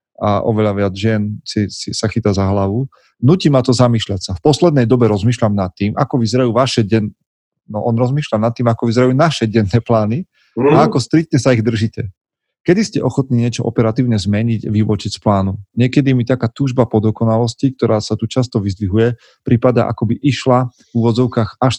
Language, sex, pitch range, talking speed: Slovak, male, 105-125 Hz, 185 wpm